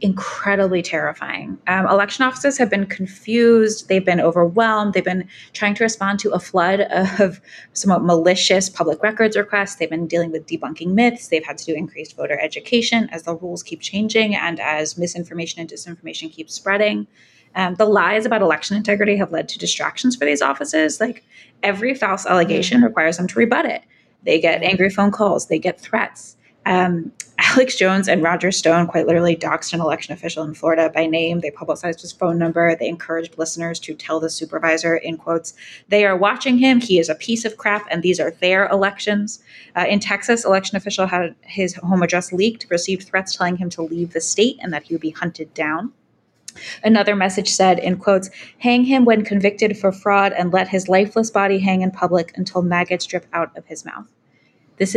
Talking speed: 195 wpm